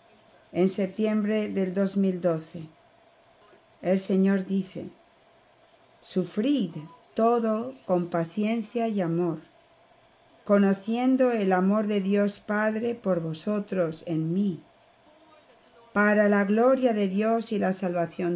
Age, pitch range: 50-69, 180-220 Hz